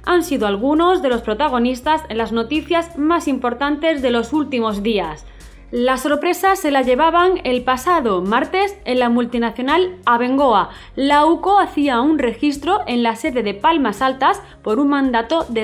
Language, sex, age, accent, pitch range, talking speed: Spanish, female, 20-39, Spanish, 235-310 Hz, 160 wpm